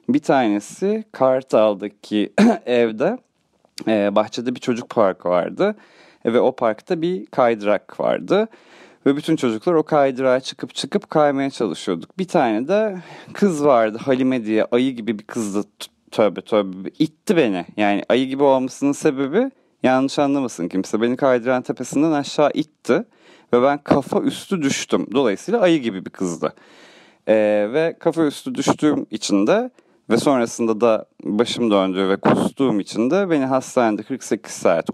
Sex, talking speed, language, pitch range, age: male, 140 wpm, Turkish, 110-155 Hz, 30-49